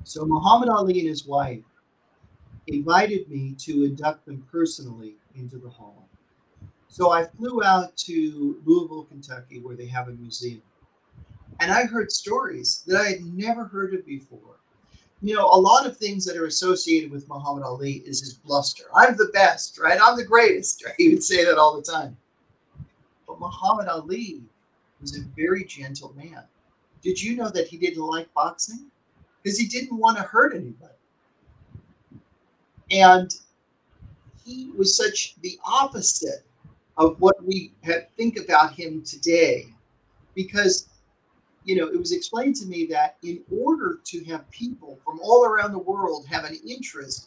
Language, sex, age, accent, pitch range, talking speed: English, male, 40-59, American, 155-250 Hz, 160 wpm